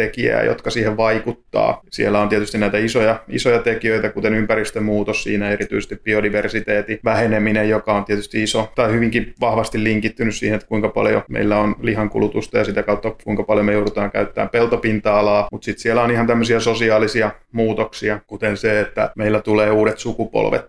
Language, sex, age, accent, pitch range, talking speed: Finnish, male, 20-39, native, 105-115 Hz, 160 wpm